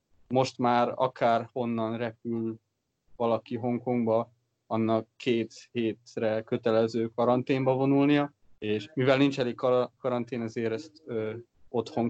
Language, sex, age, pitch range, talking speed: Hungarian, male, 20-39, 110-125 Hz, 105 wpm